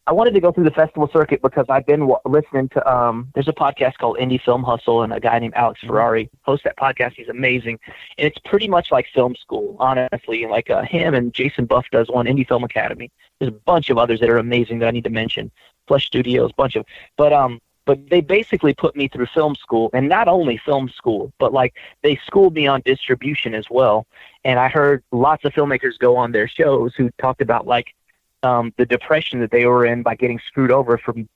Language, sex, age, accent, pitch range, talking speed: English, male, 30-49, American, 115-135 Hz, 235 wpm